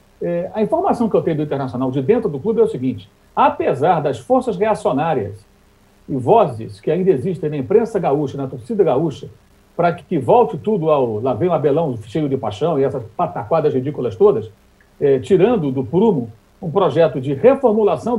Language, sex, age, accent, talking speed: Portuguese, male, 60-79, Brazilian, 185 wpm